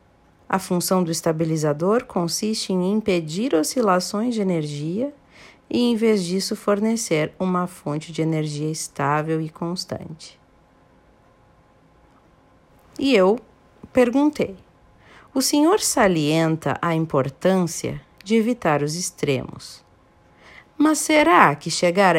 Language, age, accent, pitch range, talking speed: Portuguese, 50-69, Brazilian, 160-215 Hz, 105 wpm